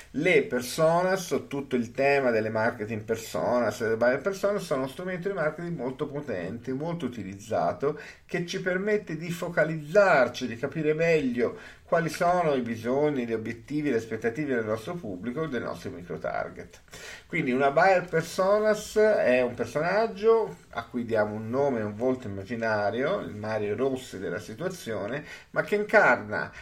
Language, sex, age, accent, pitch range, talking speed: Italian, male, 50-69, native, 115-170 Hz, 145 wpm